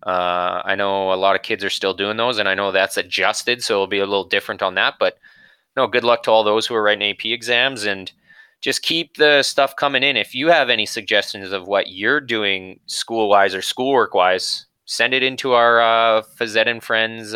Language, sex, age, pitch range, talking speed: English, male, 20-39, 100-125 Hz, 225 wpm